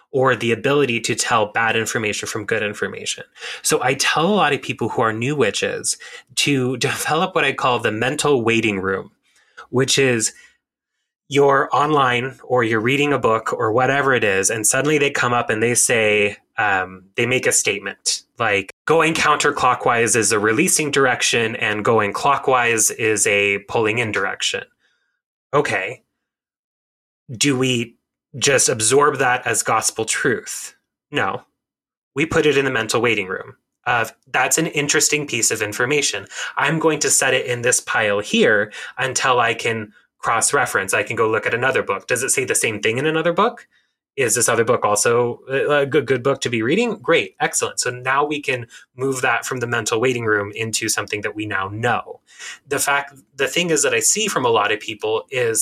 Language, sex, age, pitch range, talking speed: English, male, 20-39, 115-150 Hz, 185 wpm